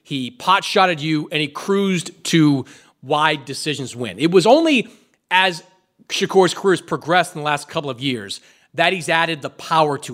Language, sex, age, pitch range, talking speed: English, male, 30-49, 150-220 Hz, 180 wpm